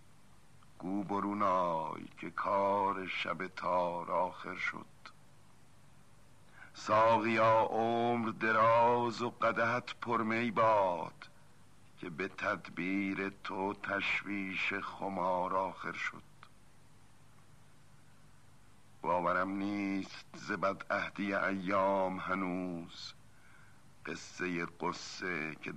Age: 60-79